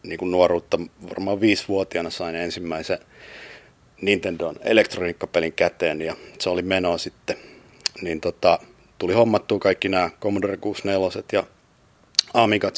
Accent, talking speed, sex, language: native, 115 wpm, male, Finnish